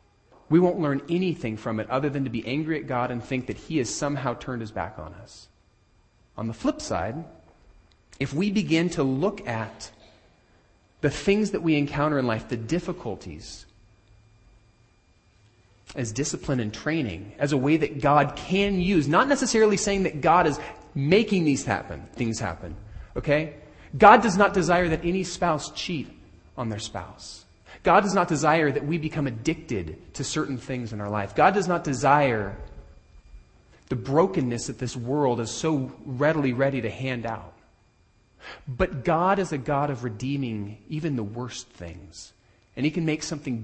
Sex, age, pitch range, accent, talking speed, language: male, 30-49, 110-155 Hz, American, 170 wpm, English